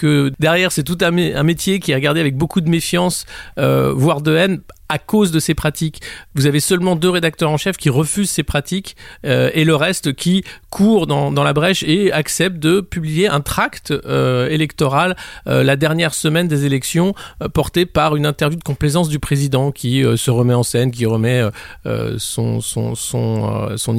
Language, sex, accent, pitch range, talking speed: French, male, French, 130-165 Hz, 205 wpm